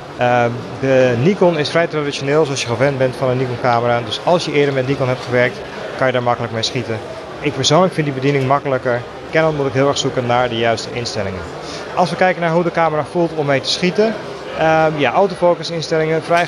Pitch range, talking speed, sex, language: 125-160 Hz, 220 wpm, male, Dutch